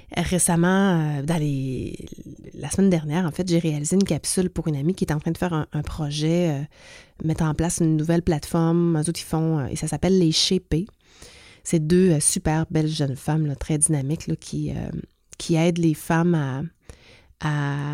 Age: 30-49